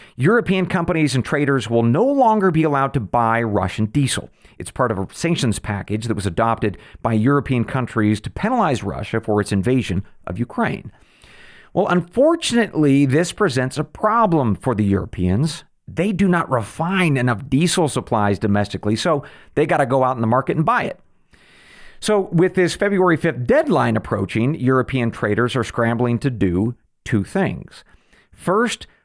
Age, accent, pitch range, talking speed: 40-59, American, 115-170 Hz, 160 wpm